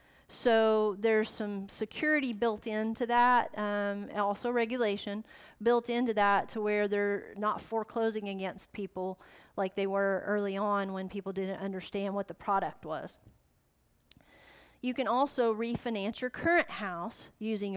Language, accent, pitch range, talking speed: English, American, 200-235 Hz, 140 wpm